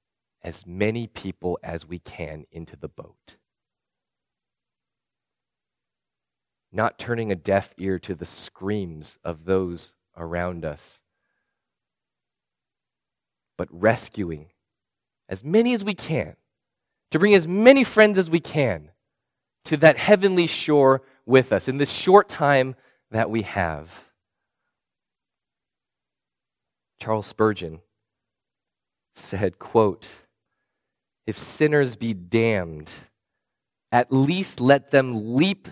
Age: 30-49